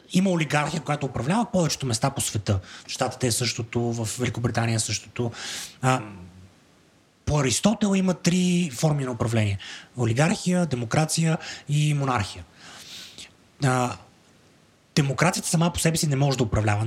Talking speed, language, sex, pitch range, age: 130 wpm, Bulgarian, male, 120-155 Hz, 30-49